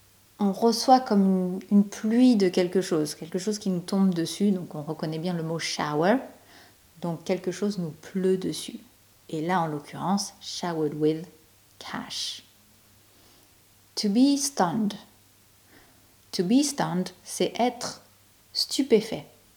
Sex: female